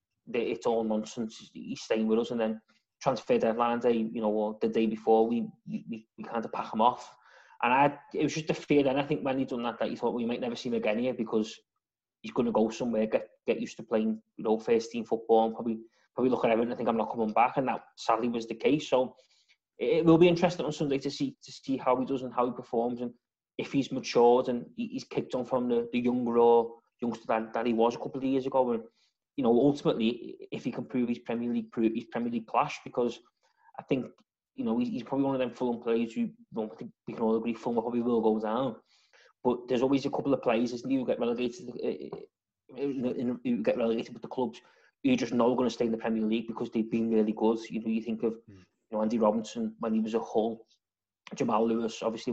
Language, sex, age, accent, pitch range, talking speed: English, male, 20-39, British, 115-135 Hz, 240 wpm